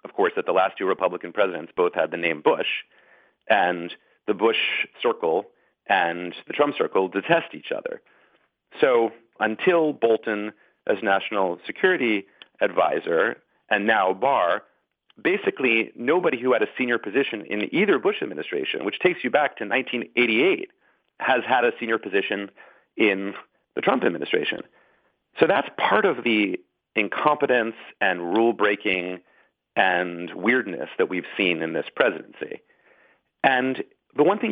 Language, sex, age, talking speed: English, male, 40-59, 140 wpm